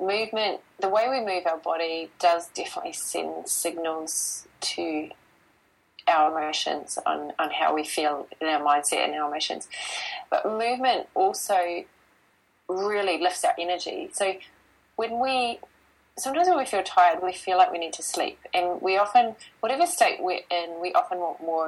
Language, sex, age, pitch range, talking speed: English, female, 20-39, 165-225 Hz, 160 wpm